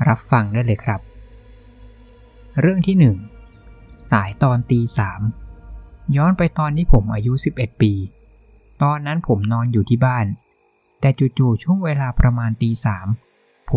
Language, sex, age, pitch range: Thai, male, 20-39, 110-140 Hz